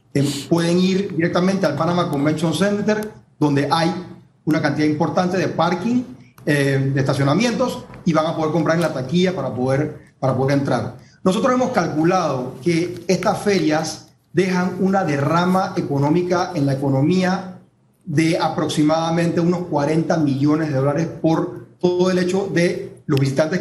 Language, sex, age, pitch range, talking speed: Spanish, male, 40-59, 155-190 Hz, 145 wpm